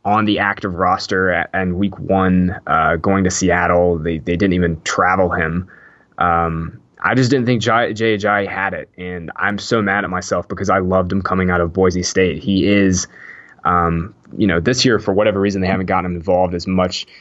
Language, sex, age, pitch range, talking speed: English, male, 20-39, 90-110 Hz, 215 wpm